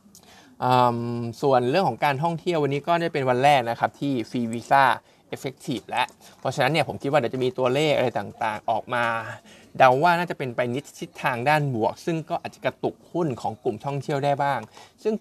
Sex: male